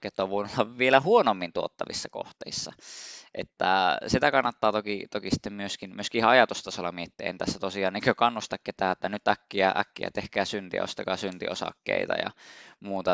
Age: 20-39